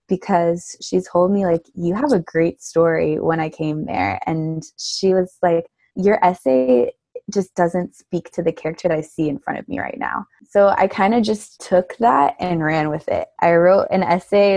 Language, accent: English, American